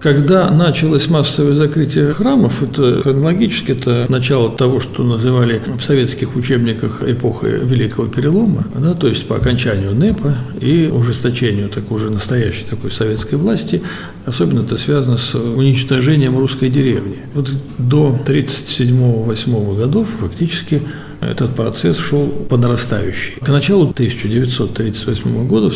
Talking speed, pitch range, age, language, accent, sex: 115 wpm, 115-145 Hz, 60-79, Russian, native, male